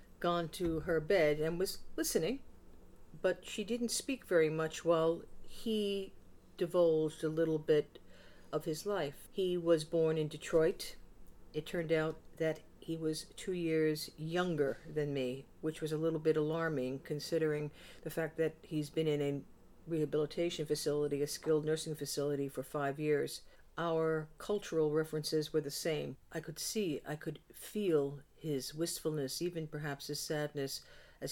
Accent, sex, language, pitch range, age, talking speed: American, female, English, 145-160 Hz, 50-69, 155 wpm